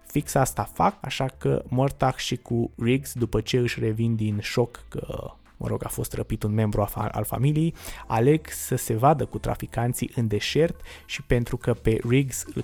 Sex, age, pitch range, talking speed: male, 20-39, 110-130 Hz, 185 wpm